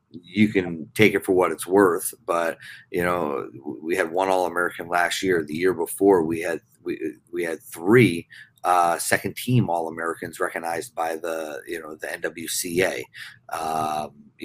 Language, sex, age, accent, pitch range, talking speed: English, male, 30-49, American, 90-115 Hz, 160 wpm